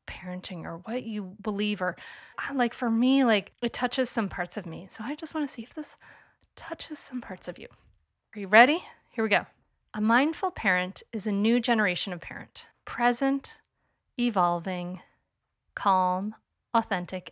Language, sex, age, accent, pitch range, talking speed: English, female, 30-49, American, 185-240 Hz, 165 wpm